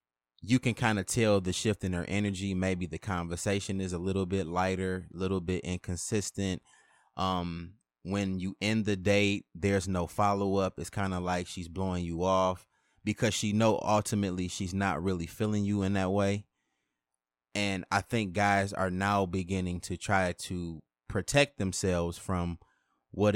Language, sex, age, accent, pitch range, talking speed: English, male, 20-39, American, 85-100 Hz, 165 wpm